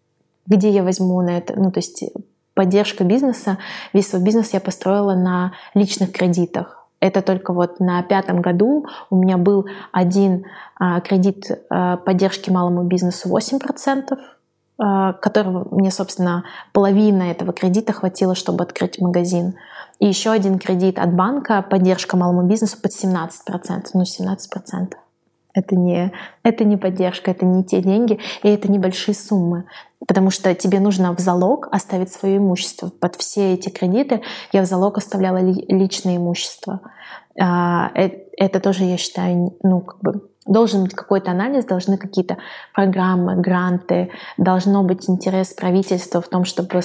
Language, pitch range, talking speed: Russian, 185-205 Hz, 140 wpm